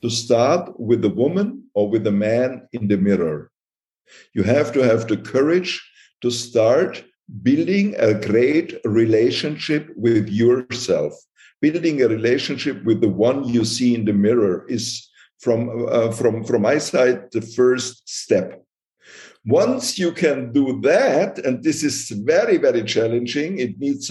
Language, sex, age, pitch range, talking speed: English, male, 50-69, 105-145 Hz, 150 wpm